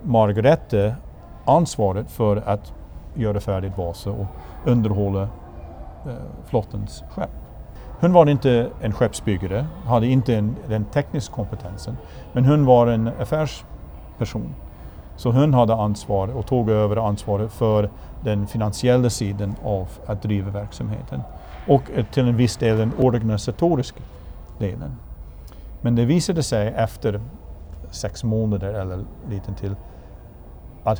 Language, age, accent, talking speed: Swedish, 50-69, Norwegian, 120 wpm